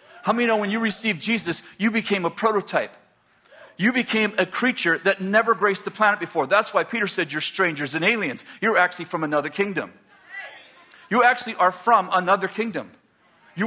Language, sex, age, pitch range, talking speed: English, male, 50-69, 140-200 Hz, 180 wpm